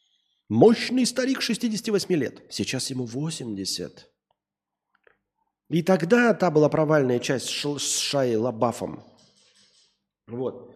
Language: Russian